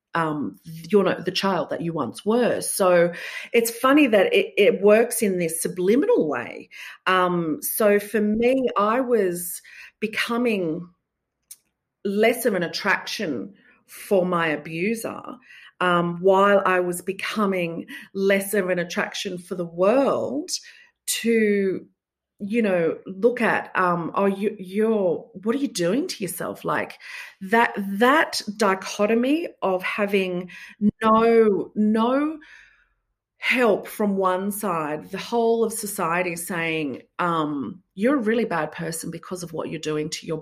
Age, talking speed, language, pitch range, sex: 40-59, 135 wpm, English, 185-245 Hz, female